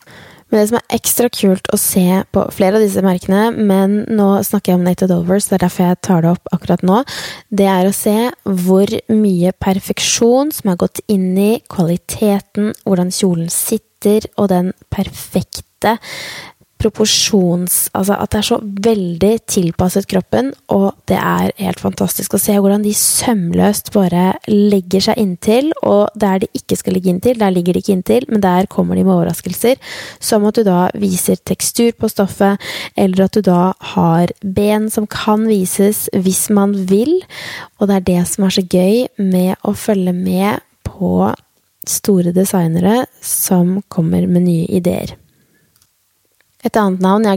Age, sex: 20-39, female